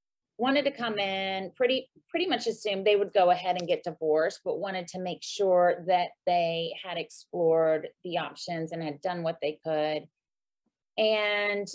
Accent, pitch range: American, 180-235 Hz